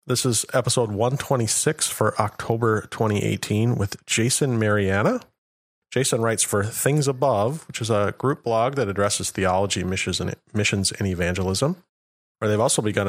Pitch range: 100-125 Hz